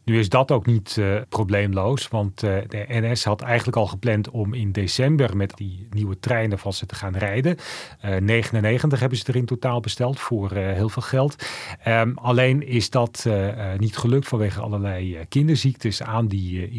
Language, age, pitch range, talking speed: Dutch, 40-59, 100-125 Hz, 190 wpm